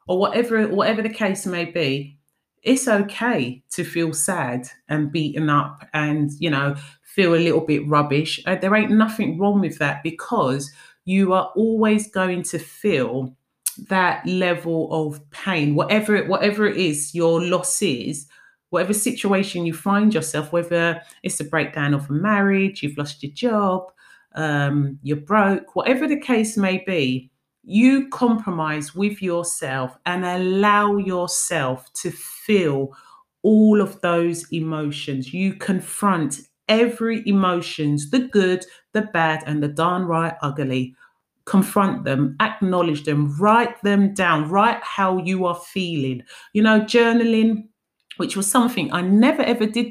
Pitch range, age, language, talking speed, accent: 150-210 Hz, 30-49, English, 145 wpm, British